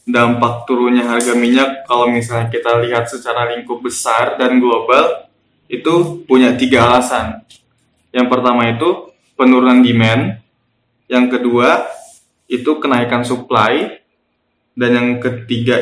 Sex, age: male, 20-39